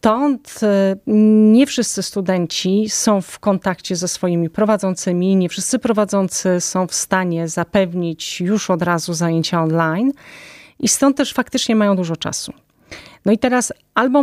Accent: native